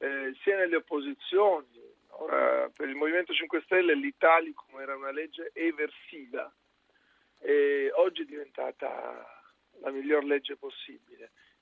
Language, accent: Italian, native